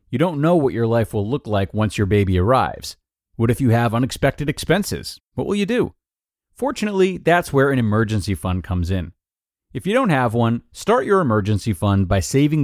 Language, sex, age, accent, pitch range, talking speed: English, male, 30-49, American, 100-140 Hz, 200 wpm